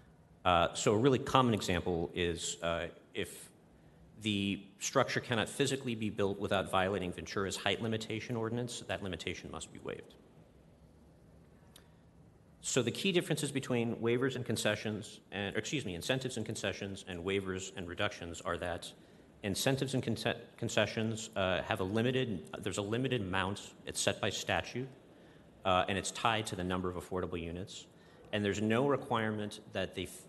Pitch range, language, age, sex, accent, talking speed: 90-115 Hz, English, 40-59, male, American, 155 wpm